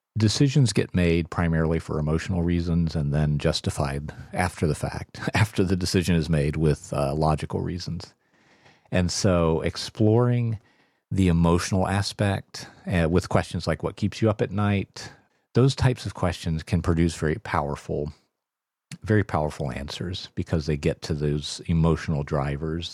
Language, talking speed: English, 145 wpm